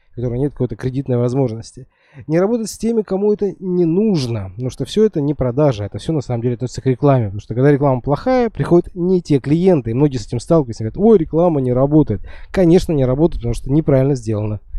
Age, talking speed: 20-39, 225 wpm